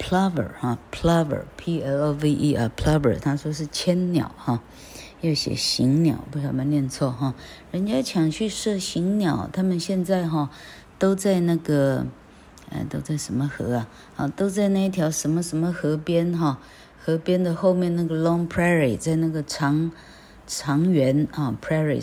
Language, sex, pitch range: Chinese, female, 130-165 Hz